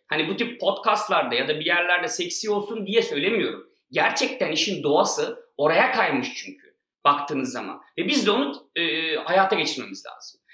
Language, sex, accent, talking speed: Turkish, male, native, 160 wpm